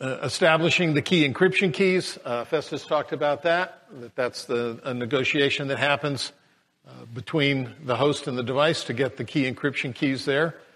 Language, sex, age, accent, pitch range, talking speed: English, male, 50-69, American, 120-145 Hz, 175 wpm